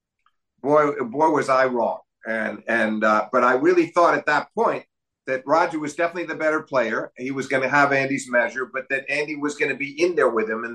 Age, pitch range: 50-69, 120-150 Hz